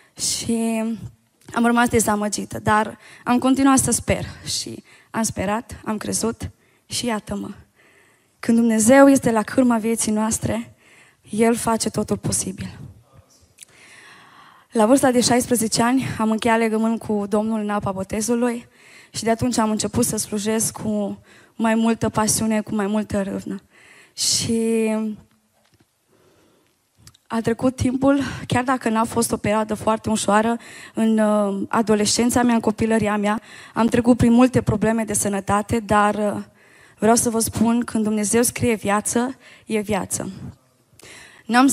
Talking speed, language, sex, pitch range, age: 130 wpm, Romanian, female, 205-230 Hz, 20-39